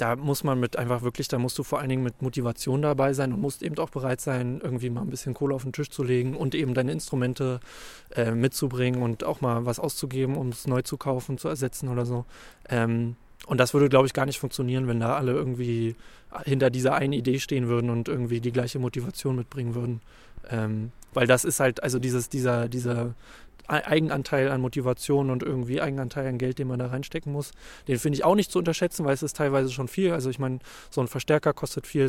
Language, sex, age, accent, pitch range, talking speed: German, male, 20-39, German, 125-140 Hz, 225 wpm